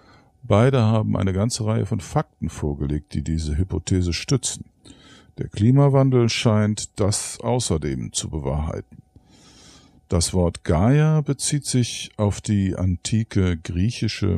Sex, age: male, 50-69